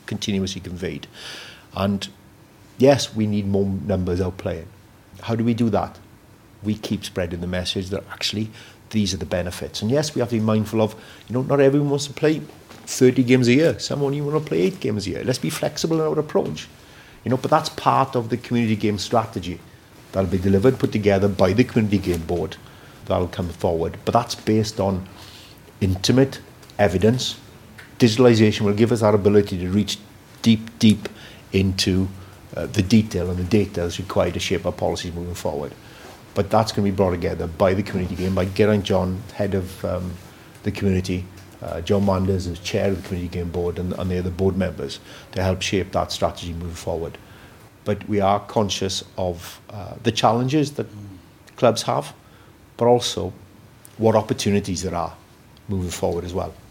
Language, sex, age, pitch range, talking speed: English, male, 50-69, 95-115 Hz, 185 wpm